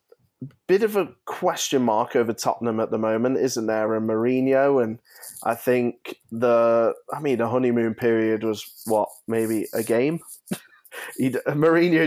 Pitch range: 120-140 Hz